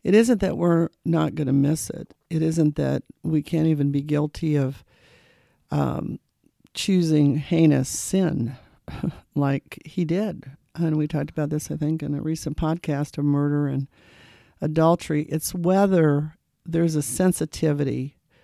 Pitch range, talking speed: 150-190 Hz, 145 wpm